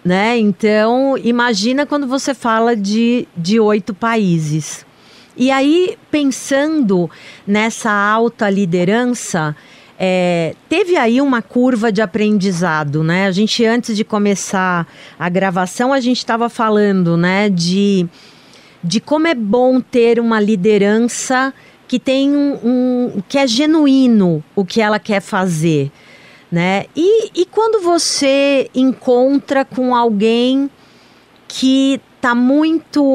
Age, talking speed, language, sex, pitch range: 40-59, 120 wpm, English, female, 200-250 Hz